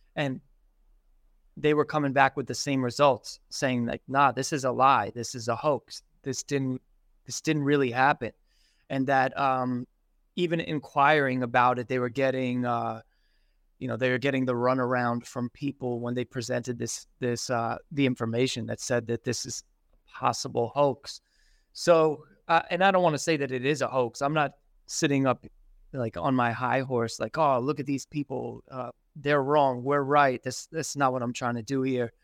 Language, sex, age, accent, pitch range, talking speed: English, male, 20-39, American, 125-145 Hz, 195 wpm